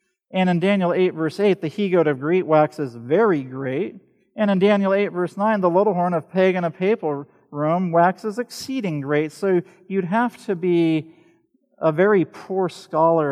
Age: 40-59